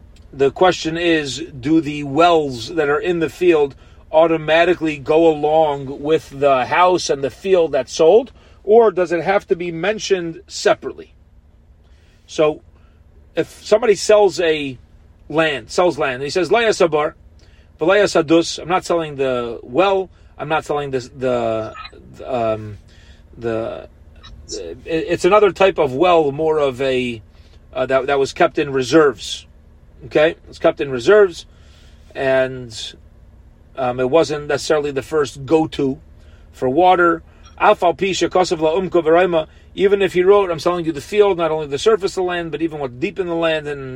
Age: 40-59